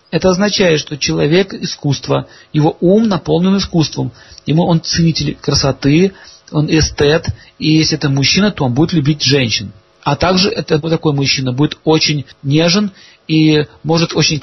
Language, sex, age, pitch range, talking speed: Russian, male, 40-59, 140-185 Hz, 140 wpm